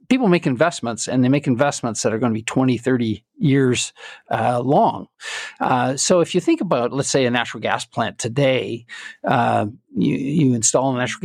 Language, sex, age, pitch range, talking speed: English, male, 50-69, 125-175 Hz, 190 wpm